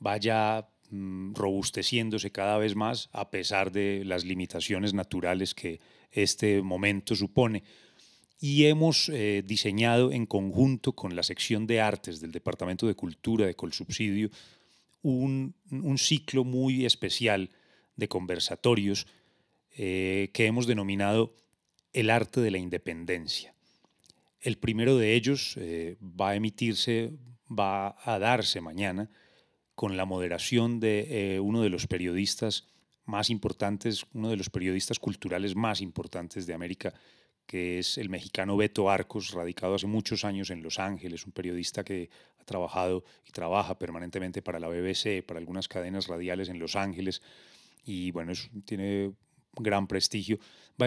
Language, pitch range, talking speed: Spanish, 95-110 Hz, 140 wpm